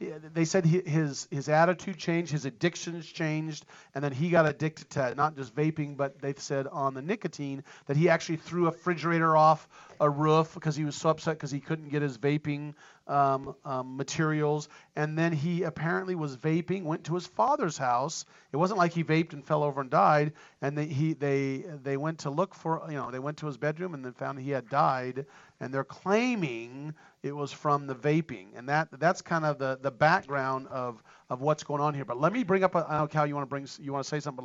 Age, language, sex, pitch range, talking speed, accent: 40-59, English, male, 140-170 Hz, 230 wpm, American